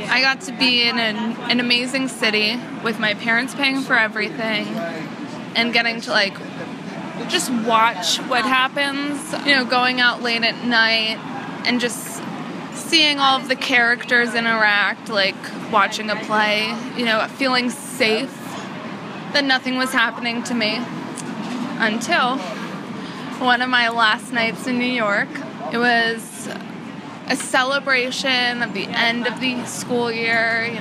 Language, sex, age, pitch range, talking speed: English, female, 20-39, 220-255 Hz, 140 wpm